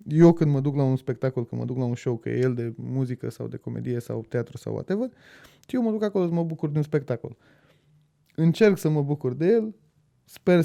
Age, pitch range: 20-39, 135-185 Hz